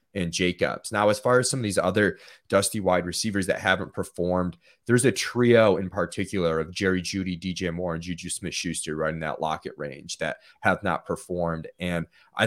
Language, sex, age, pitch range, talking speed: English, male, 20-39, 85-100 Hz, 190 wpm